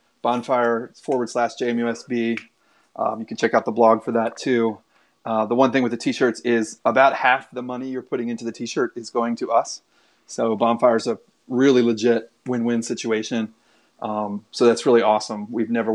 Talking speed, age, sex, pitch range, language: 190 wpm, 30-49, male, 115-130 Hz, English